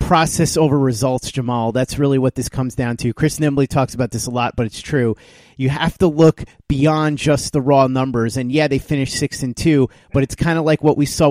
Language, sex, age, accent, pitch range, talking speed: English, male, 30-49, American, 130-160 Hz, 240 wpm